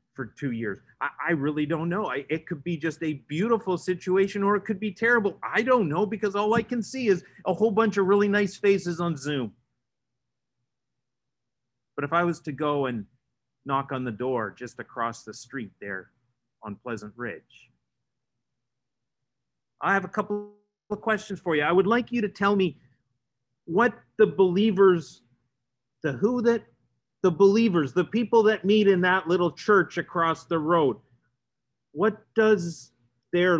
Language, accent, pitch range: English, American, 125-195 Hz